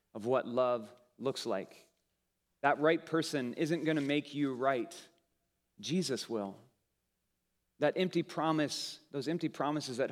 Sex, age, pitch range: male, 30-49, 115-150 Hz